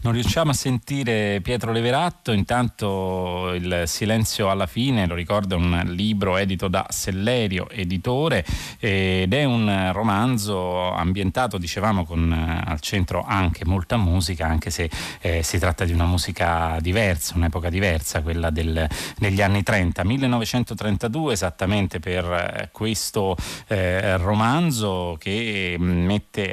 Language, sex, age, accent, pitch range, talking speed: Italian, male, 30-49, native, 85-105 Hz, 125 wpm